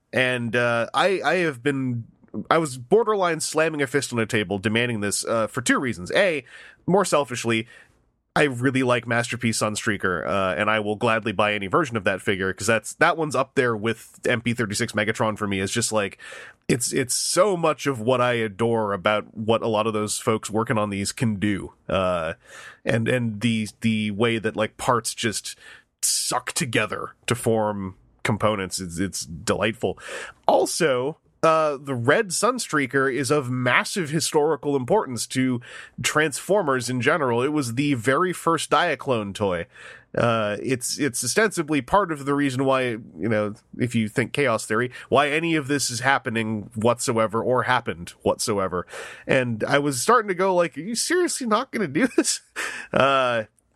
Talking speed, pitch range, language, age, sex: 170 wpm, 110-145 Hz, English, 30-49, male